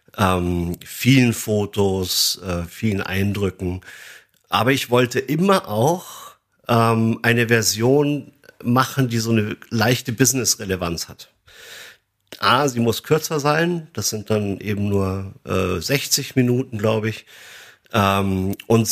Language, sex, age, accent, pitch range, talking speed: German, male, 50-69, German, 95-125 Hz, 120 wpm